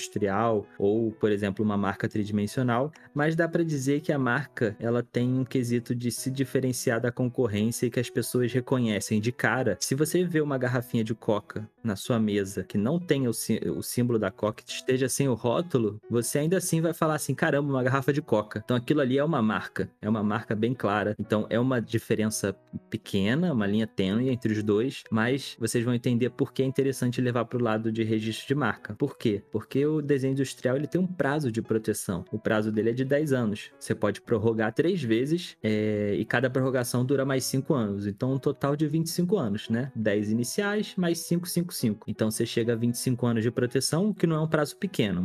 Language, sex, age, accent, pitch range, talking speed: Portuguese, male, 20-39, Brazilian, 110-135 Hz, 215 wpm